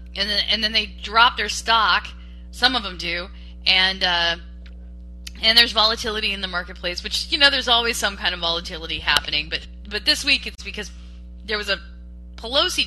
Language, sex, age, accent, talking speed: English, female, 10-29, American, 185 wpm